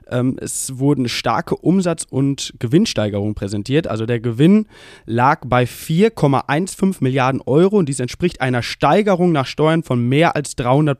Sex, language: male, German